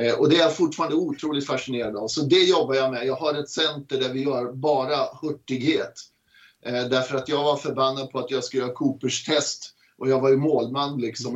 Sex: male